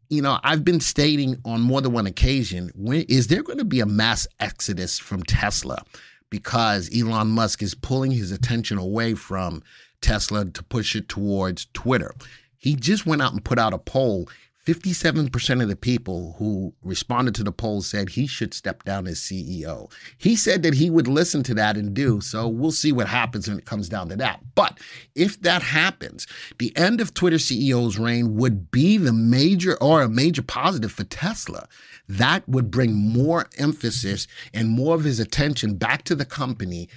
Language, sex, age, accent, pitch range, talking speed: English, male, 50-69, American, 105-140 Hz, 185 wpm